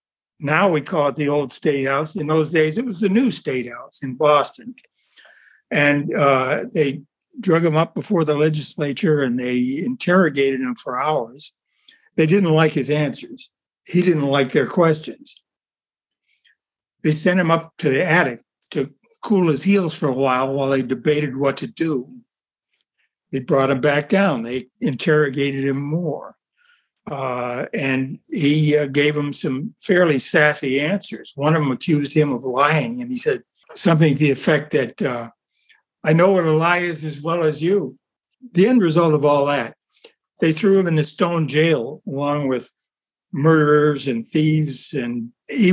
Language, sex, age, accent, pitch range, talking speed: English, male, 60-79, American, 145-190 Hz, 170 wpm